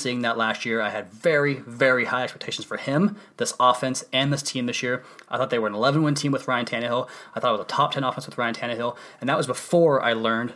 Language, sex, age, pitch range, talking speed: English, male, 20-39, 115-135 Hz, 260 wpm